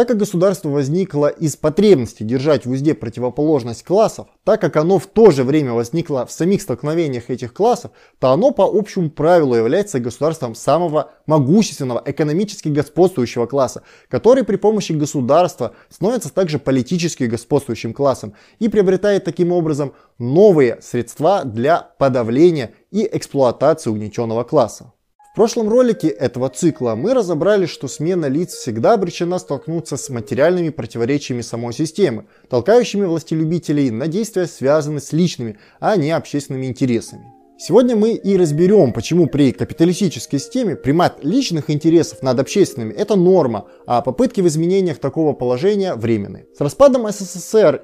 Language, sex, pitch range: Russian, male, 130-190 Hz